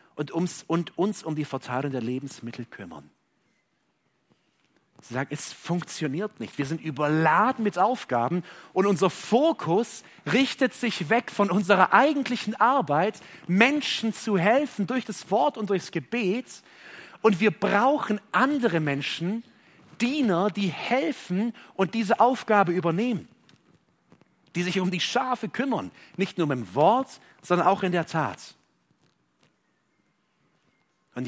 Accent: German